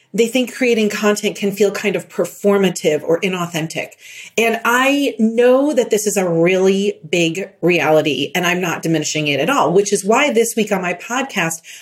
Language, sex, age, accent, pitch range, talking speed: English, female, 40-59, American, 185-245 Hz, 185 wpm